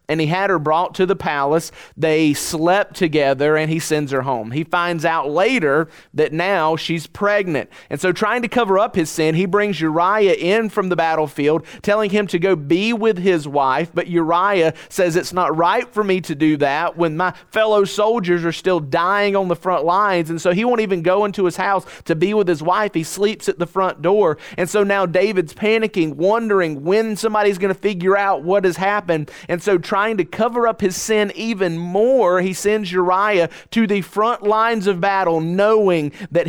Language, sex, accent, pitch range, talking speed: English, male, American, 155-195 Hz, 205 wpm